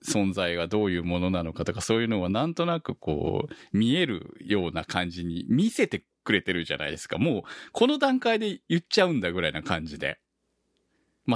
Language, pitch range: Japanese, 85-135 Hz